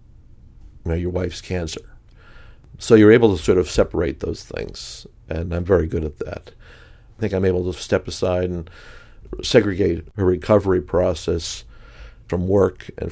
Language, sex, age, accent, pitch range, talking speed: English, male, 50-69, American, 85-100 Hz, 155 wpm